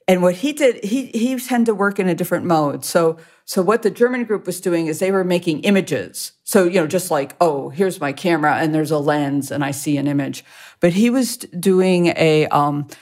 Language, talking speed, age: English, 230 wpm, 50-69